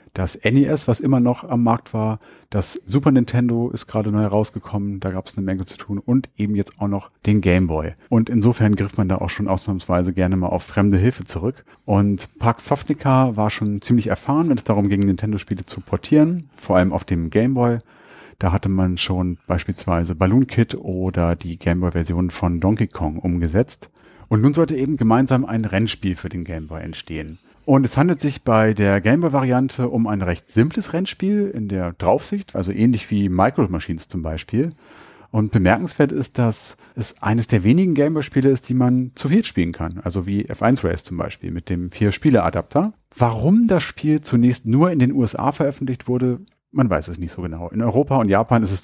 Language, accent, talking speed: German, German, 195 wpm